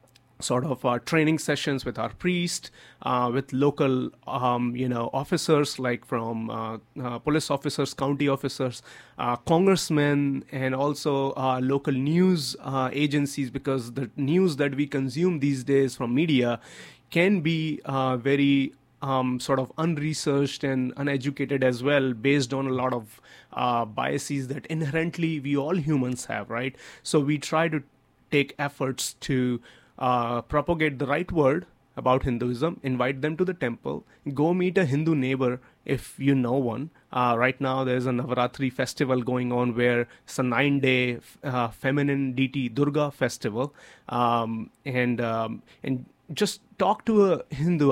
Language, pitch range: English, 130-145 Hz